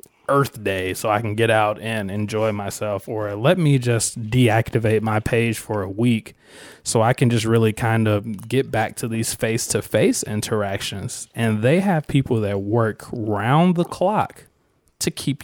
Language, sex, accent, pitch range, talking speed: English, male, American, 105-125 Hz, 180 wpm